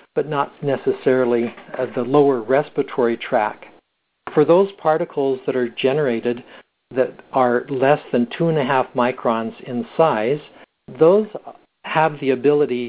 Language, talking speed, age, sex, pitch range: English, 120 wpm, 60-79, male, 120-150 Hz